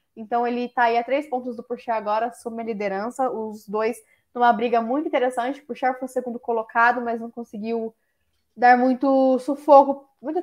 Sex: female